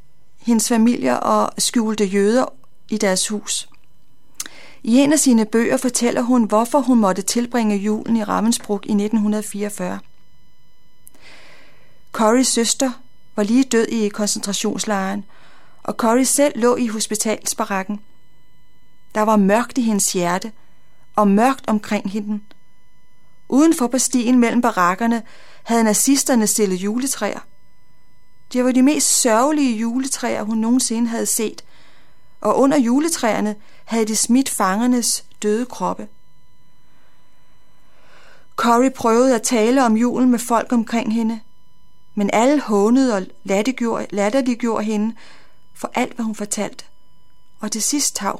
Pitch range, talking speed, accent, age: 210-255 Hz, 125 wpm, native, 30-49